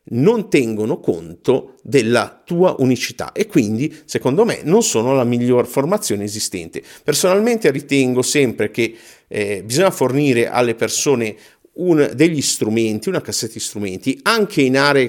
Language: Italian